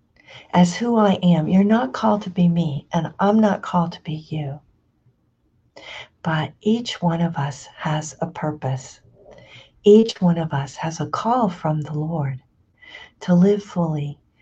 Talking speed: 160 wpm